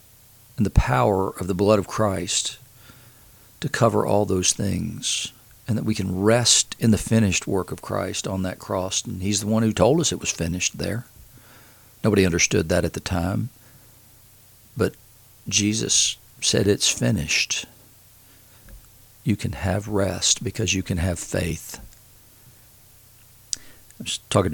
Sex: male